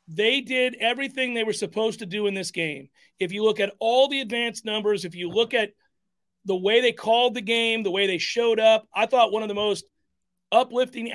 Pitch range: 180-225 Hz